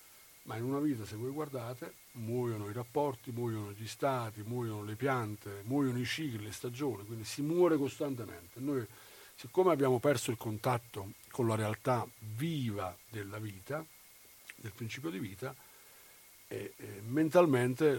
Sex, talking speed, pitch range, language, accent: male, 140 wpm, 110-135 Hz, Italian, native